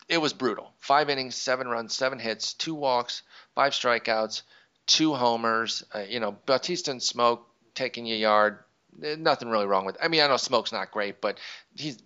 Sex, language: male, English